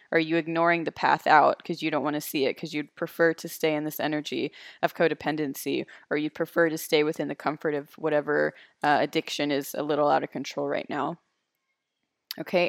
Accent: American